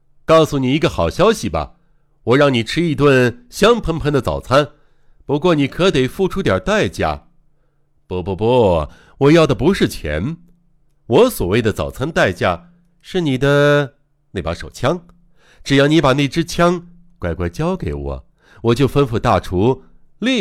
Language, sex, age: Chinese, male, 60-79